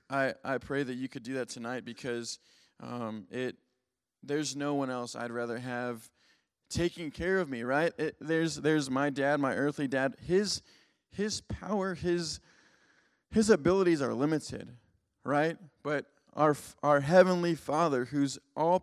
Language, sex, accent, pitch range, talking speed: English, male, American, 125-155 Hz, 155 wpm